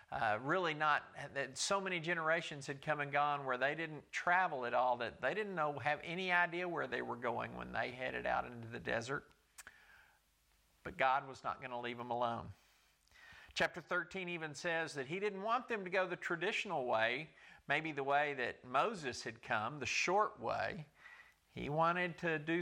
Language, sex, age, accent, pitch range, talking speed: English, male, 50-69, American, 130-170 Hz, 190 wpm